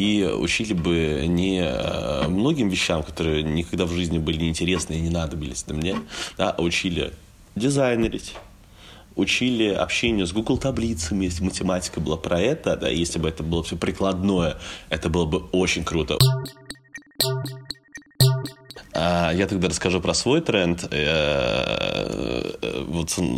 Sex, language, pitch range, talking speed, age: male, Russian, 80-95 Hz, 130 wpm, 20-39